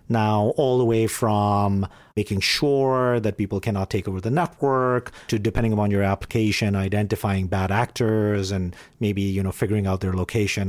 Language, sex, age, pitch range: English, male, 40-59, 100-125 Hz